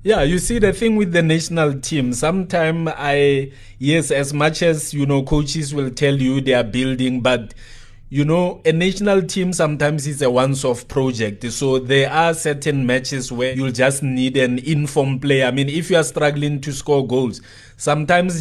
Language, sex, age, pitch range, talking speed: English, male, 20-39, 130-150 Hz, 185 wpm